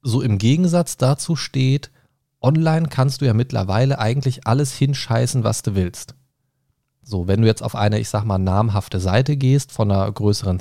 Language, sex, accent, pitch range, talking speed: German, male, German, 105-135 Hz, 175 wpm